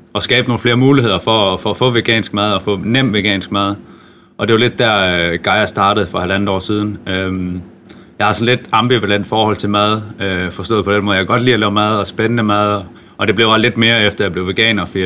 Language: Danish